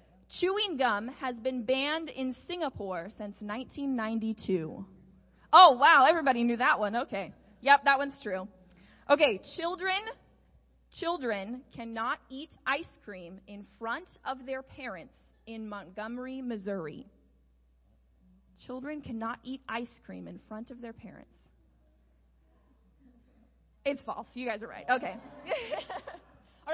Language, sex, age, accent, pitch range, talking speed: English, female, 20-39, American, 180-280 Hz, 120 wpm